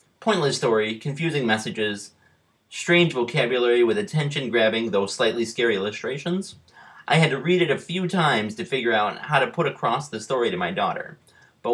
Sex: male